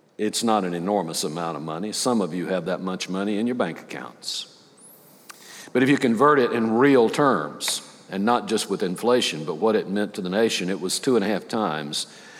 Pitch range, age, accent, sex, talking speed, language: 95-125 Hz, 60-79, American, male, 220 wpm, English